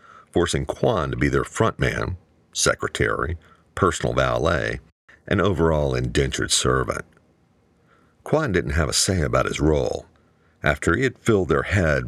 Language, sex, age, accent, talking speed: English, male, 50-69, American, 135 wpm